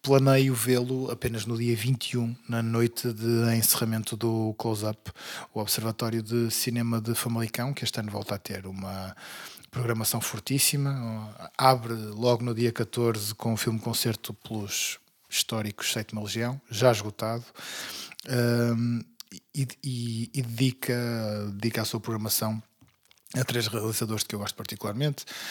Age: 20-39